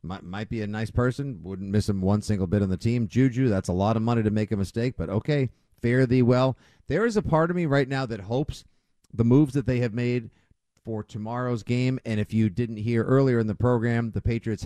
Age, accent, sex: 50-69, American, male